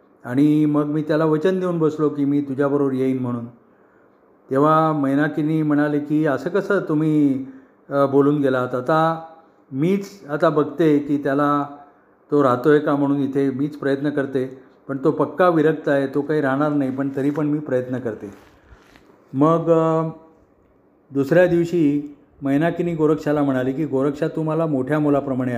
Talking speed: 145 wpm